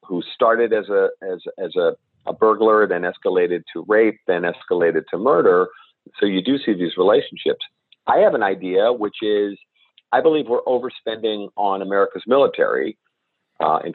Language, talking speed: English, 165 wpm